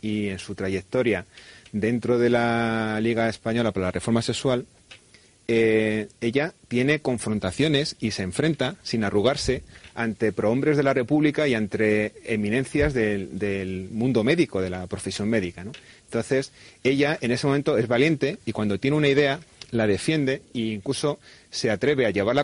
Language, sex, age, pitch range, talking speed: Spanish, male, 30-49, 105-135 Hz, 160 wpm